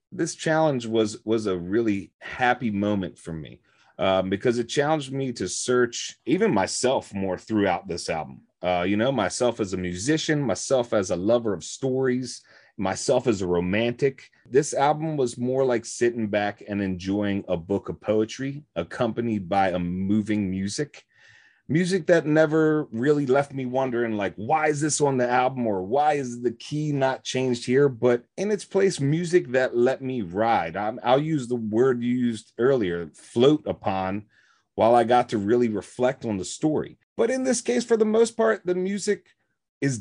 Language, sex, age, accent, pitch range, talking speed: English, male, 30-49, American, 105-150 Hz, 175 wpm